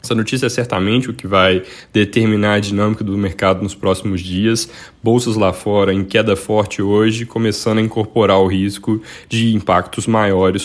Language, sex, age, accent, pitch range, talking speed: Portuguese, male, 10-29, Brazilian, 95-115 Hz, 170 wpm